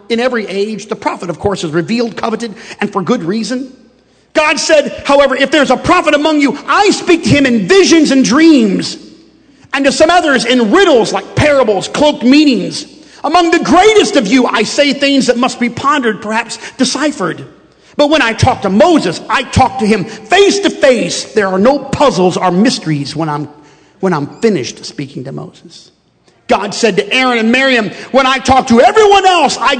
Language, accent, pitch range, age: English, American, 190-275 Hz, 50-69